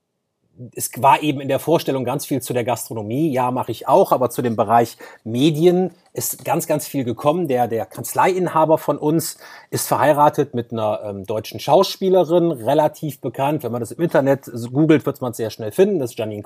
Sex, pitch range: male, 125-170 Hz